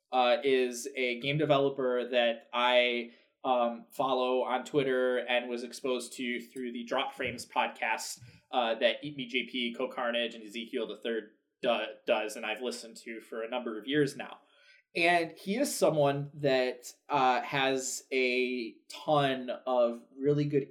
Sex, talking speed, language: male, 155 wpm, English